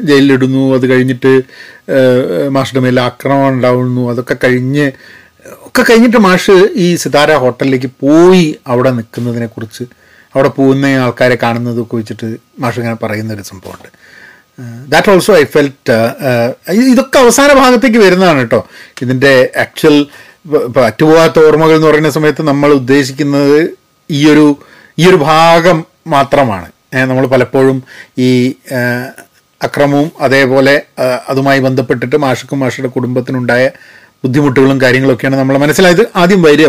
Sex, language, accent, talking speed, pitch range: male, Malayalam, native, 110 wpm, 125-160 Hz